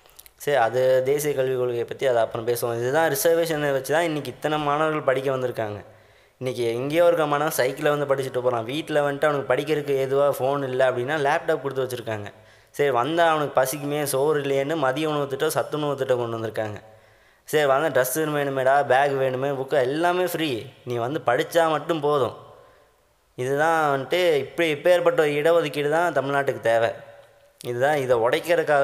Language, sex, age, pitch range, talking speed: Tamil, male, 20-39, 125-155 Hz, 155 wpm